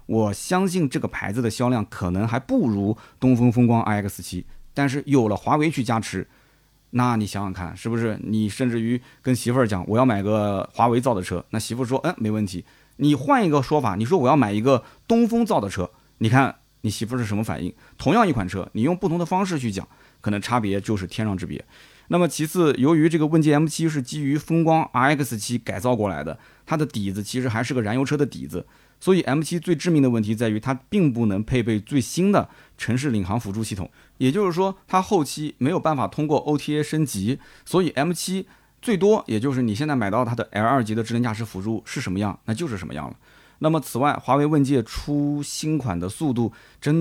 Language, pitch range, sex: Chinese, 110-150 Hz, male